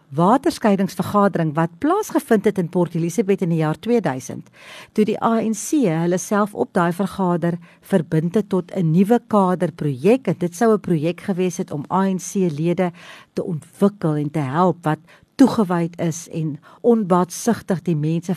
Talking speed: 155 wpm